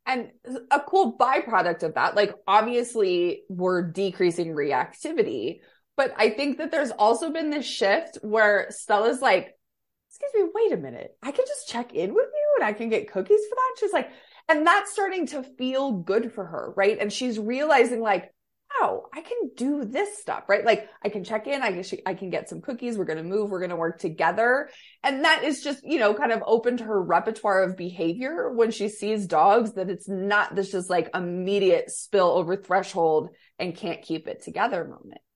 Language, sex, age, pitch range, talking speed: English, female, 20-39, 195-285 Hz, 200 wpm